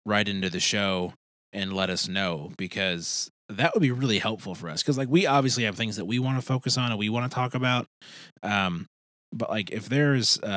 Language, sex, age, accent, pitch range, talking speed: English, male, 30-49, American, 95-125 Hz, 220 wpm